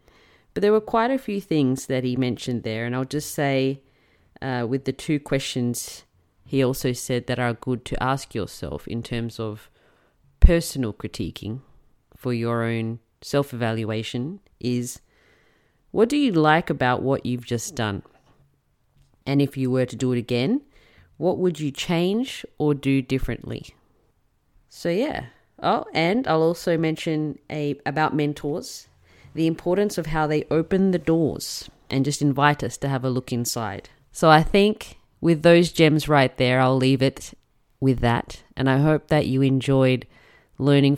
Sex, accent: female, Australian